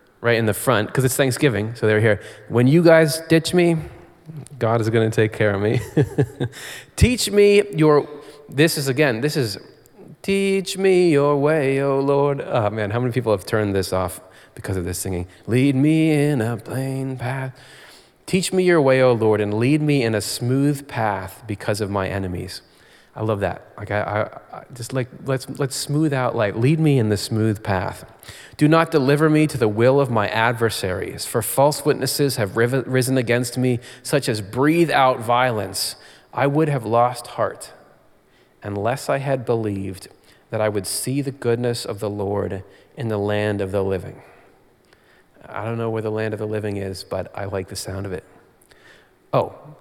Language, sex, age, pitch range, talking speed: English, male, 30-49, 105-145 Hz, 195 wpm